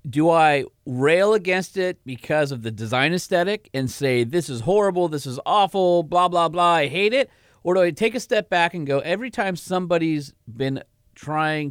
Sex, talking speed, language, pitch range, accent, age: male, 195 wpm, English, 115-155 Hz, American, 30-49